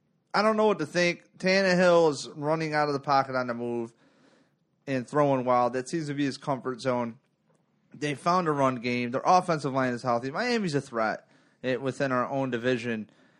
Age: 30-49